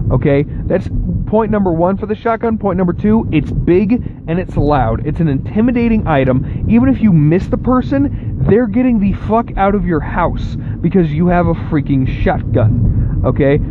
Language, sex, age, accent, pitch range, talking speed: English, male, 30-49, American, 125-170 Hz, 180 wpm